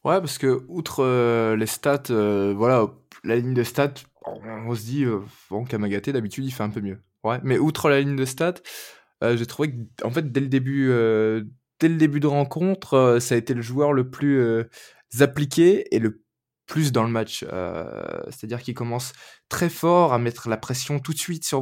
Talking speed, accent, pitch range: 215 wpm, French, 120-145 Hz